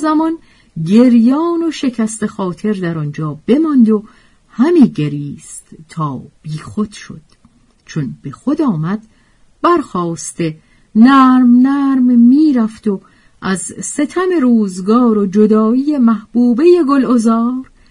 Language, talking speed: Persian, 105 wpm